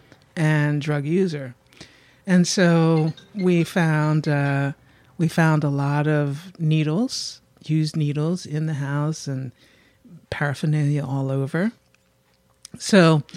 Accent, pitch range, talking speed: American, 140-160 Hz, 110 wpm